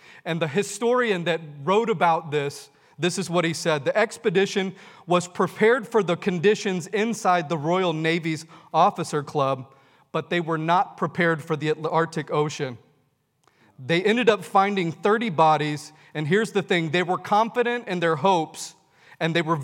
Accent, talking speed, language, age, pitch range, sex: American, 160 wpm, English, 30-49, 150-185 Hz, male